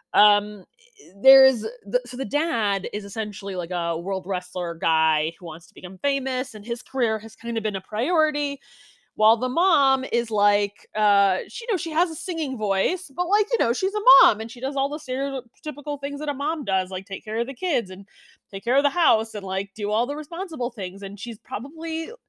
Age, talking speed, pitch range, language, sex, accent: 20-39, 220 wpm, 195-270 Hz, English, female, American